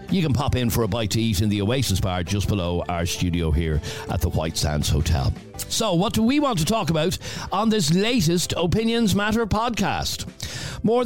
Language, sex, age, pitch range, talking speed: English, male, 60-79, 115-170 Hz, 205 wpm